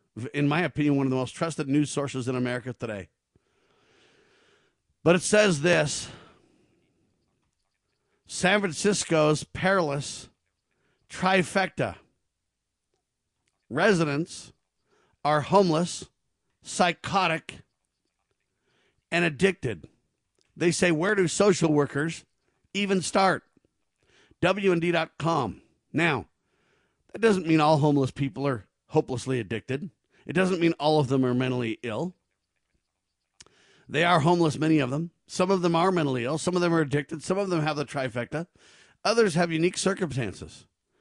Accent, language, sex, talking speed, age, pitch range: American, English, male, 120 wpm, 50-69, 140-175 Hz